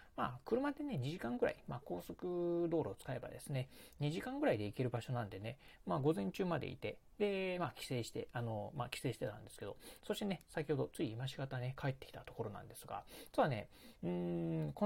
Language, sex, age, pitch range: Japanese, male, 40-59, 120-165 Hz